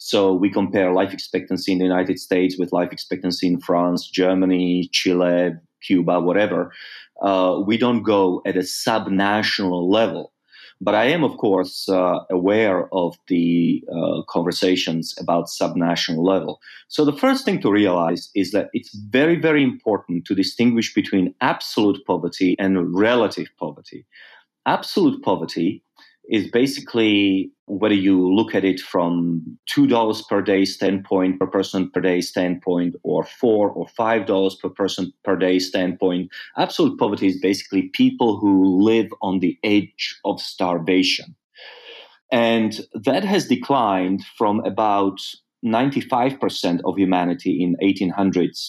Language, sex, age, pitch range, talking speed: English, male, 30-49, 90-105 Hz, 135 wpm